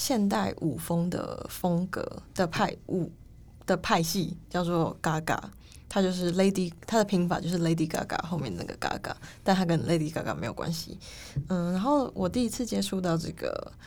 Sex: female